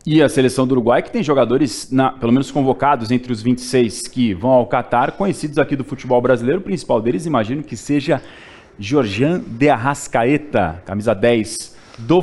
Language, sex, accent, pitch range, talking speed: Portuguese, male, Brazilian, 125-170 Hz, 170 wpm